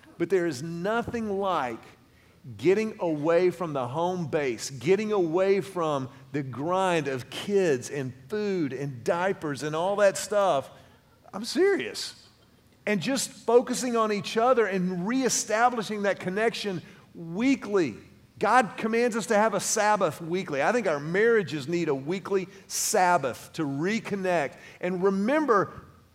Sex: male